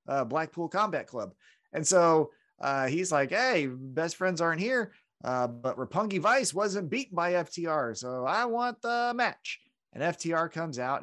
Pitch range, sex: 135-210 Hz, male